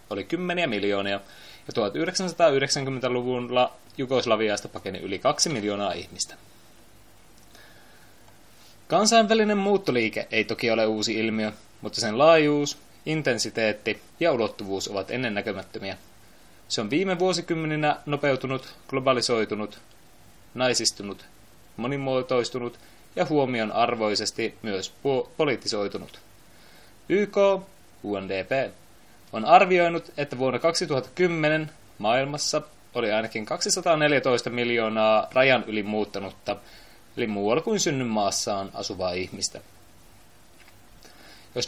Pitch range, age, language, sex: 105-150 Hz, 20-39, Finnish, male